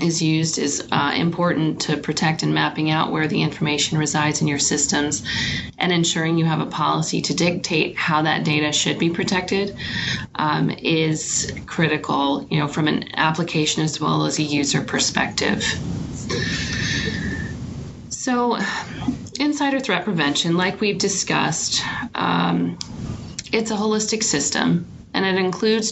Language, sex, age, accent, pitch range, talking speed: English, female, 30-49, American, 150-175 Hz, 140 wpm